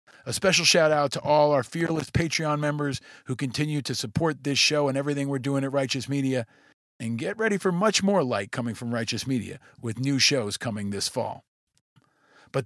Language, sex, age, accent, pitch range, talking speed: English, male, 50-69, American, 120-155 Hz, 190 wpm